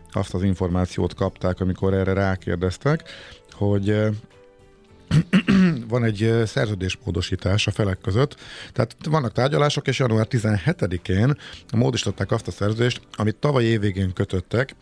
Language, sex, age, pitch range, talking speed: Hungarian, male, 50-69, 95-115 Hz, 115 wpm